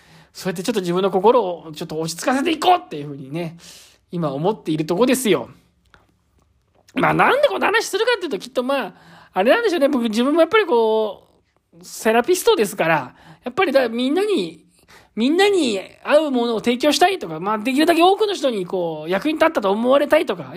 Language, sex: Japanese, male